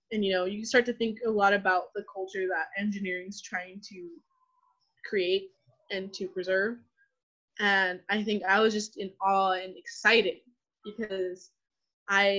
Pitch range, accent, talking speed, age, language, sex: 195-245 Hz, American, 160 wpm, 20-39, English, female